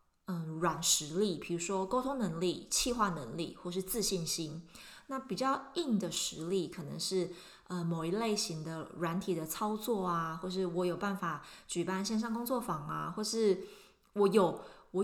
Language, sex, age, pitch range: Chinese, female, 20-39, 170-215 Hz